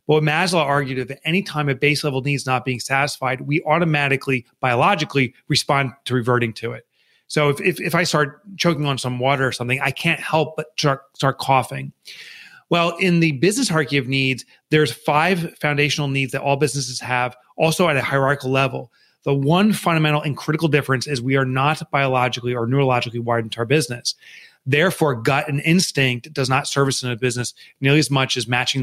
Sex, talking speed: male, 190 wpm